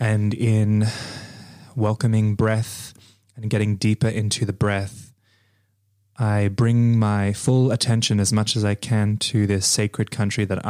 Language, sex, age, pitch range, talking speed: English, male, 20-39, 100-115 Hz, 140 wpm